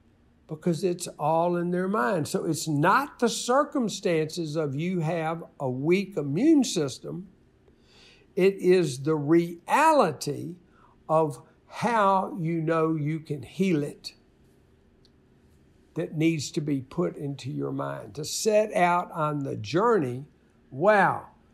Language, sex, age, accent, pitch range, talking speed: English, male, 60-79, American, 140-185 Hz, 125 wpm